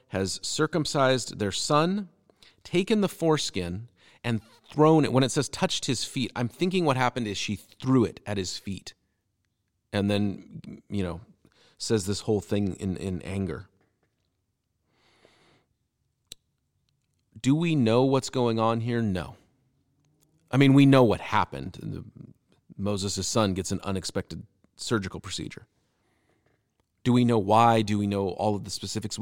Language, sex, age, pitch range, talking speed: English, male, 40-59, 100-145 Hz, 145 wpm